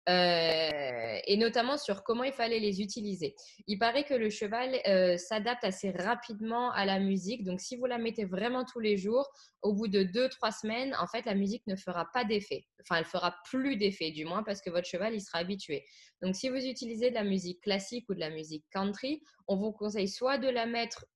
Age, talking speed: 20-39, 220 wpm